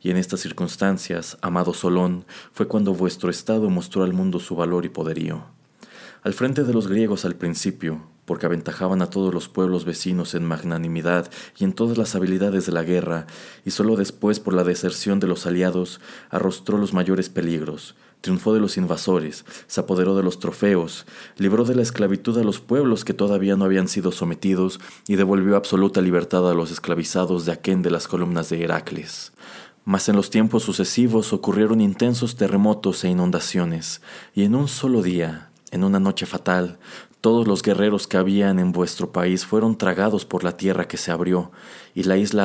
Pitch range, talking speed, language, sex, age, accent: 90-100 Hz, 180 wpm, Spanish, male, 30-49, Mexican